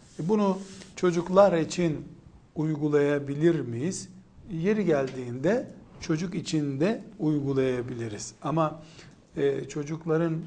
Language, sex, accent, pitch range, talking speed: Turkish, male, native, 135-160 Hz, 75 wpm